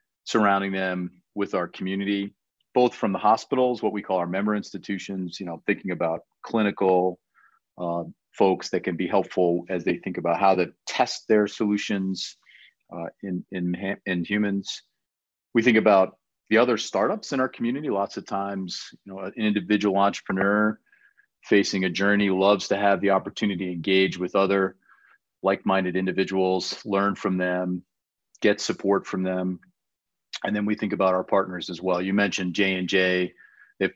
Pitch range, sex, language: 90-105 Hz, male, English